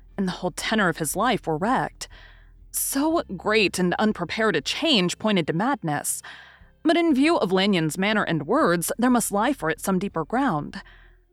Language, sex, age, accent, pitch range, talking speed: English, female, 30-49, American, 165-245 Hz, 180 wpm